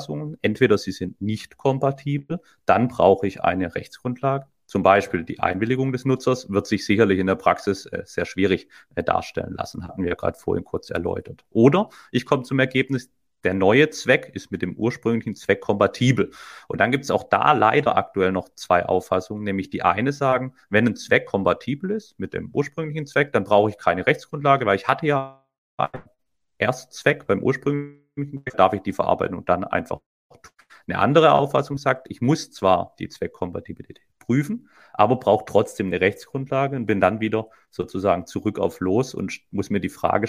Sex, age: male, 40-59